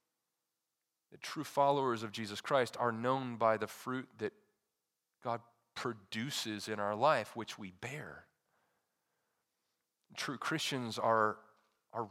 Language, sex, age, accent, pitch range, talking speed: English, male, 40-59, American, 120-155 Hz, 125 wpm